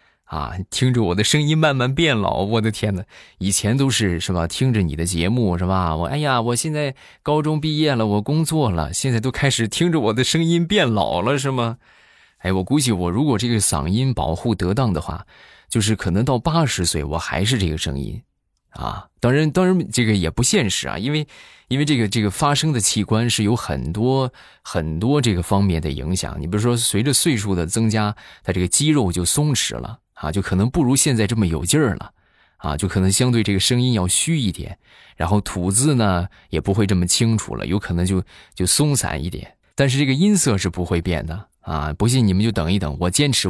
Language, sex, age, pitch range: Chinese, male, 20-39, 90-135 Hz